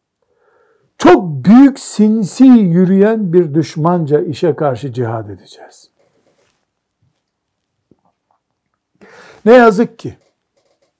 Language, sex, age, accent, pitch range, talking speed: Turkish, male, 60-79, native, 155-215 Hz, 70 wpm